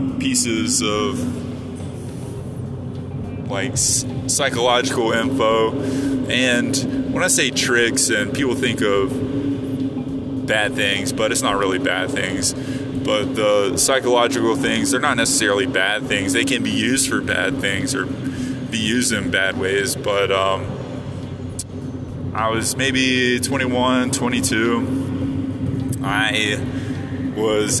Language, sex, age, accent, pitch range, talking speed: English, male, 20-39, American, 110-130 Hz, 115 wpm